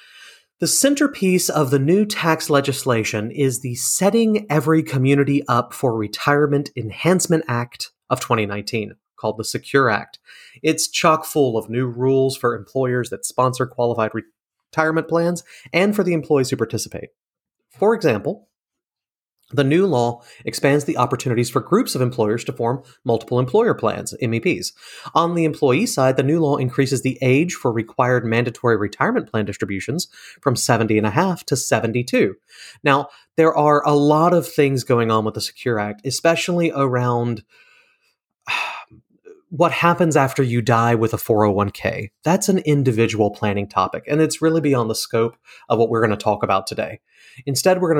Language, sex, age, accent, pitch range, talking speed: English, male, 30-49, American, 115-160 Hz, 160 wpm